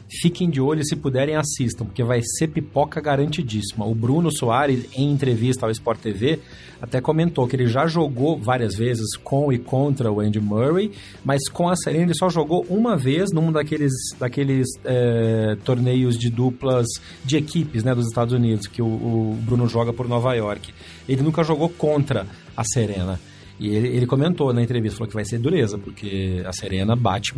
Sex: male